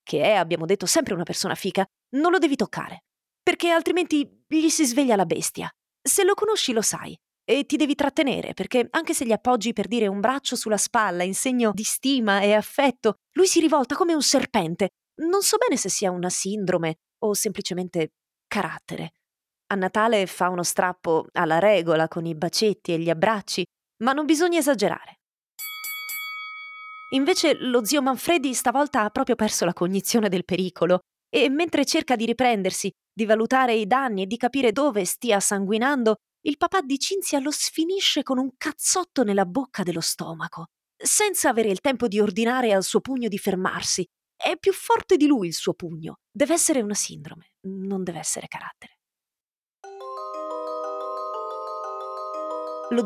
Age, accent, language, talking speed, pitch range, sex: 30-49, native, Italian, 165 wpm, 185-285 Hz, female